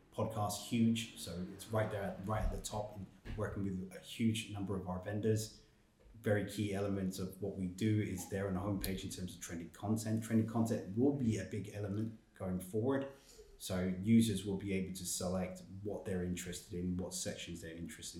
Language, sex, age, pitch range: English, male, 30-49, 85-105 Hz